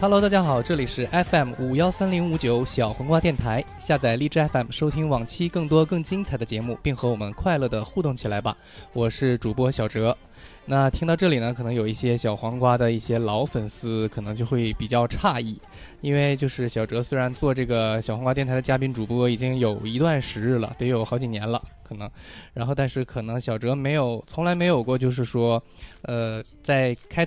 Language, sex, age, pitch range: Chinese, male, 20-39, 115-150 Hz